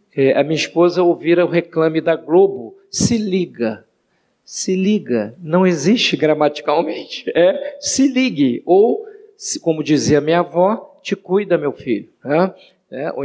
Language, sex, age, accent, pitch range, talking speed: Portuguese, male, 50-69, Brazilian, 145-185 Hz, 125 wpm